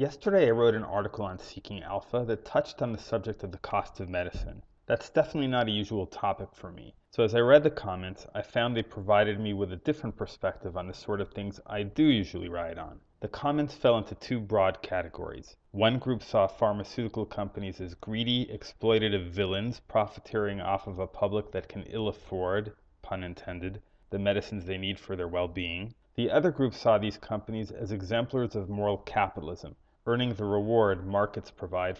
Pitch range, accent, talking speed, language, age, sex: 95-115 Hz, American, 190 wpm, English, 30-49, male